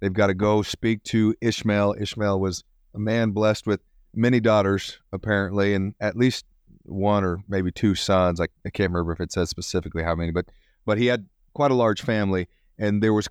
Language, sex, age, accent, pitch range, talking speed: English, male, 30-49, American, 90-110 Hz, 200 wpm